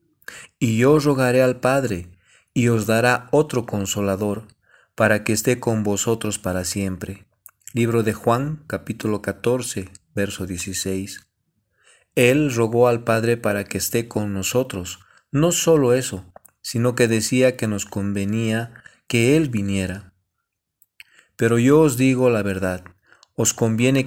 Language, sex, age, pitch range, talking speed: Spanish, male, 40-59, 100-120 Hz, 130 wpm